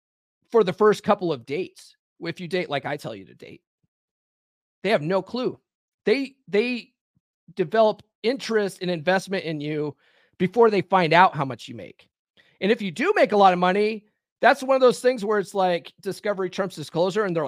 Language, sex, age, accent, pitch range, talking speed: English, male, 30-49, American, 165-225 Hz, 195 wpm